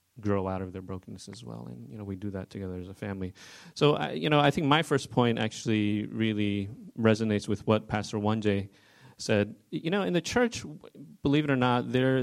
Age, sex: 30-49, male